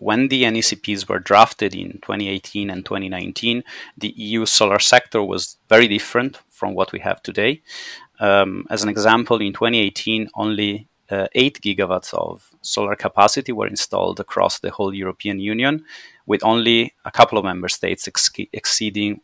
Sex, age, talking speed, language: male, 30-49, 155 wpm, English